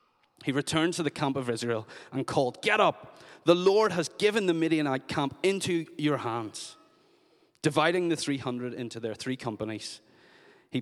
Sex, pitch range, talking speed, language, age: male, 120-155 Hz, 160 wpm, English, 30-49